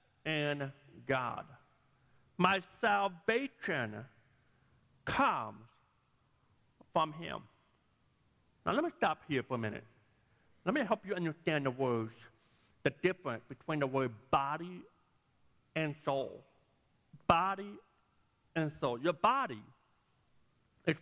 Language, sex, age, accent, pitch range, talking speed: English, male, 50-69, American, 135-210 Hz, 105 wpm